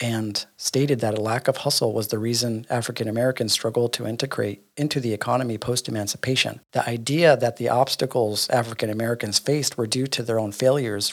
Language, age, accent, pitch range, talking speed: English, 40-59, American, 105-125 Hz, 180 wpm